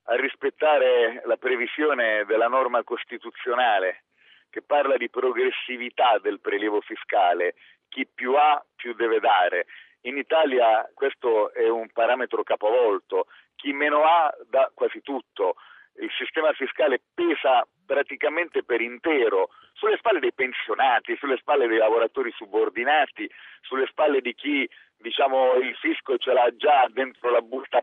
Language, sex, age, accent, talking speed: Italian, male, 40-59, native, 135 wpm